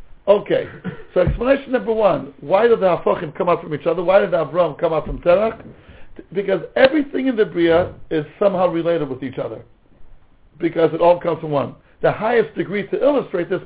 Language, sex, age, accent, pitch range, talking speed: English, male, 60-79, American, 165-260 Hz, 195 wpm